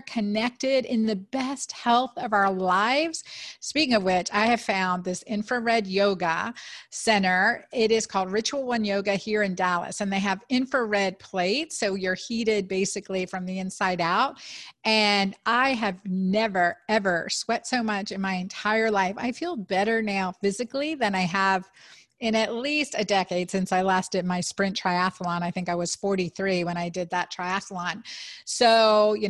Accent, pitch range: American, 185-225 Hz